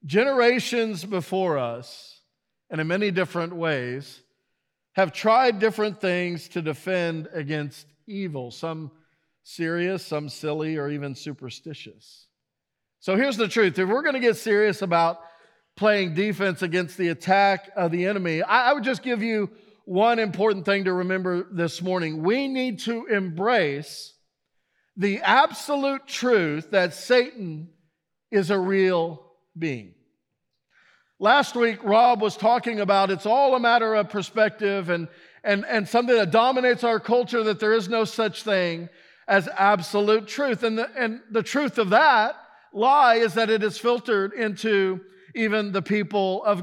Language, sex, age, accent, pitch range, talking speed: English, male, 50-69, American, 175-220 Hz, 145 wpm